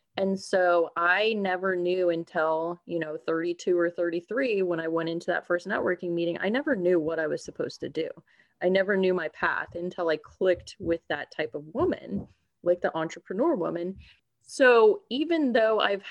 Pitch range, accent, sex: 170-200 Hz, American, female